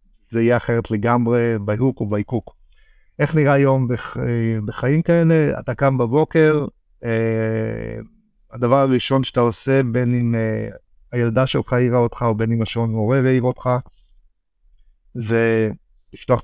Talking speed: 130 wpm